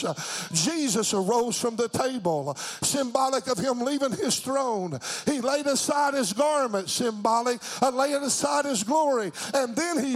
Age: 50-69